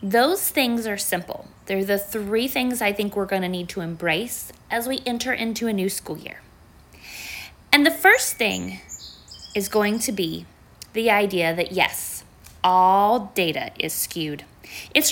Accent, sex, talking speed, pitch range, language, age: American, female, 165 wpm, 180-240 Hz, English, 20-39